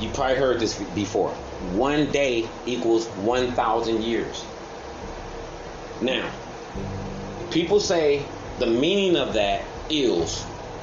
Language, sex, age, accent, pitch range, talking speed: English, male, 30-49, American, 120-185 Hz, 100 wpm